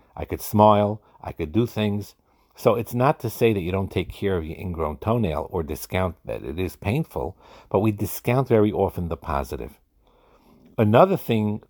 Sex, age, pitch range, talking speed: male, 50-69, 90-110 Hz, 185 wpm